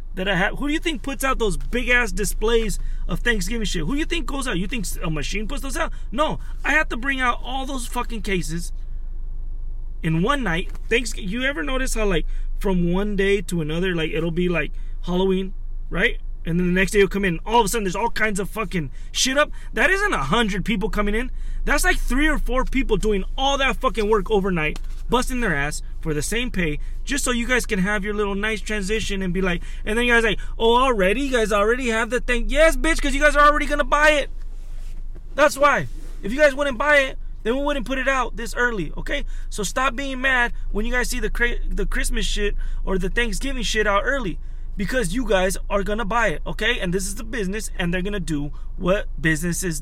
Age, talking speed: 20-39, 235 wpm